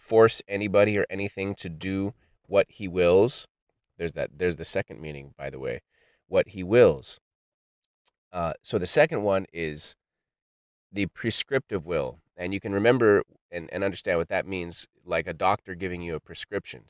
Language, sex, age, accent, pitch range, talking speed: English, male, 30-49, American, 90-105 Hz, 165 wpm